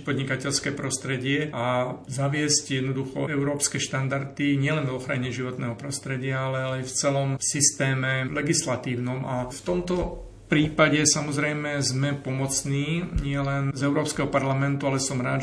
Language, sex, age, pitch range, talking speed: Slovak, male, 40-59, 125-140 Hz, 130 wpm